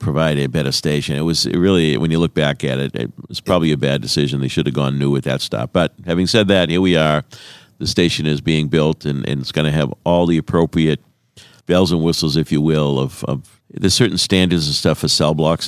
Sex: male